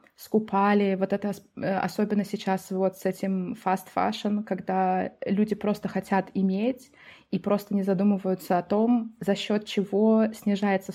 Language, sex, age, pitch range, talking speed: Russian, female, 20-39, 195-220 Hz, 130 wpm